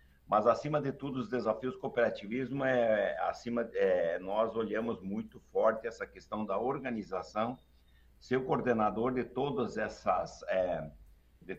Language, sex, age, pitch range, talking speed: Portuguese, male, 60-79, 95-115 Hz, 140 wpm